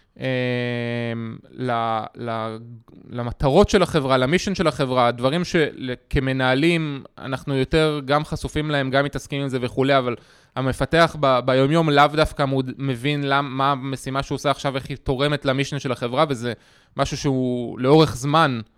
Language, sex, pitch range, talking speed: Hebrew, male, 125-160 Hz, 145 wpm